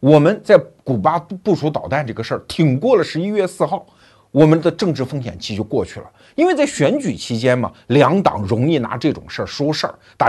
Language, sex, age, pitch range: Chinese, male, 50-69, 115-170 Hz